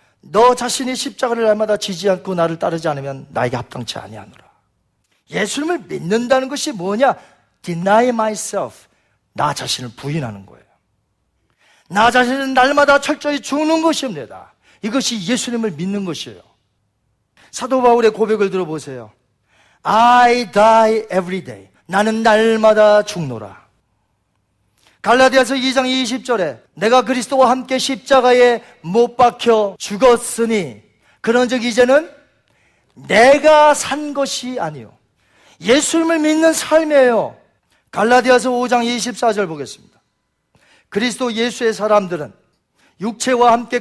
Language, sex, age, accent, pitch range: Korean, male, 40-59, native, 185-260 Hz